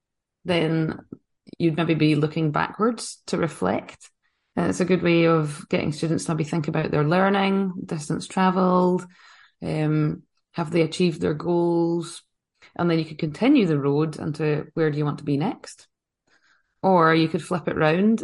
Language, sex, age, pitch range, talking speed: English, female, 20-39, 150-175 Hz, 160 wpm